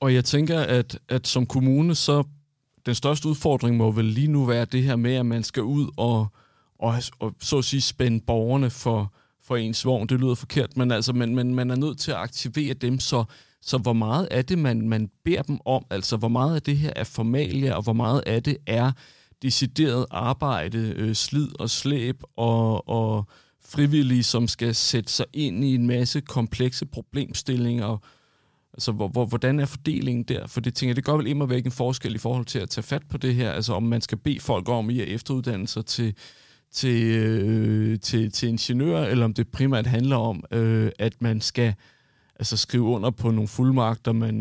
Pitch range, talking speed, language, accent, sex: 115-130 Hz, 195 wpm, Danish, native, male